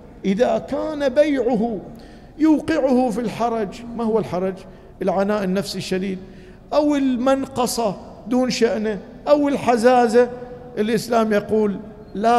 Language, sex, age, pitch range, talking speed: Arabic, male, 50-69, 185-235 Hz, 100 wpm